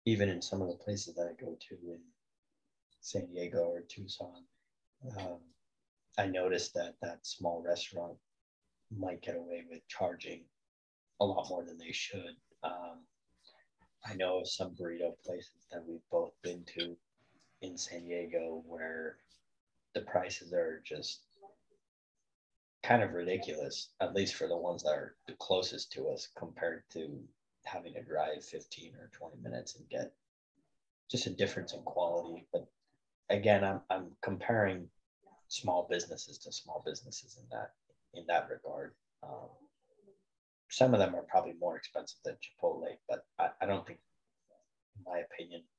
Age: 30-49